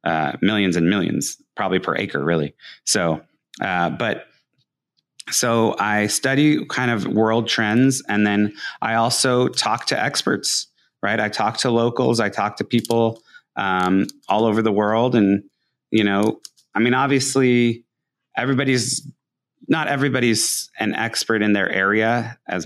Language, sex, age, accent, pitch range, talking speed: English, male, 30-49, American, 95-120 Hz, 145 wpm